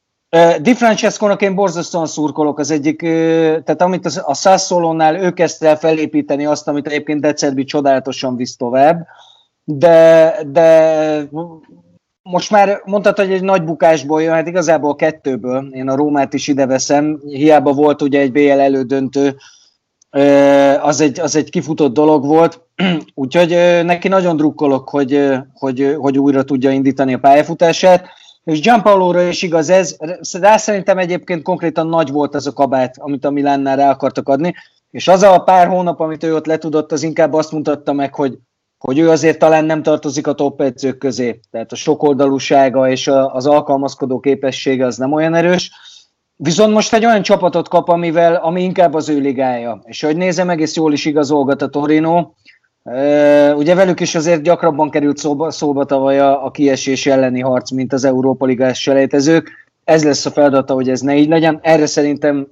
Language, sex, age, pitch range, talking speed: Hungarian, male, 30-49, 140-165 Hz, 165 wpm